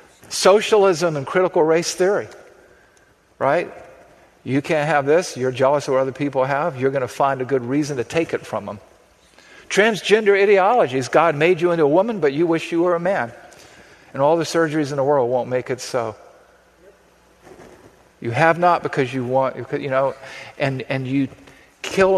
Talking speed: 180 wpm